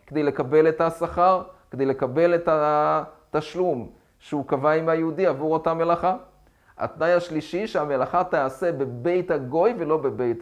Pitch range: 155-195 Hz